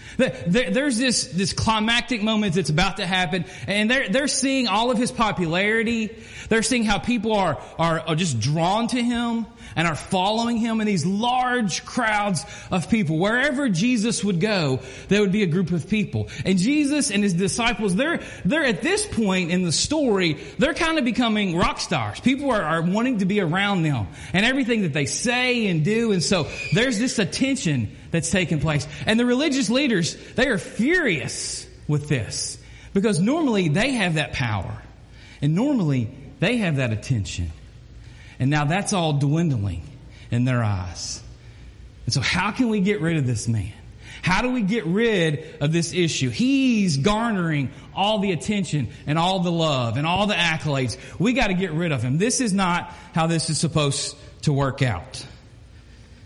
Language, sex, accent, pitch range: English, male, American, 140-225 Hz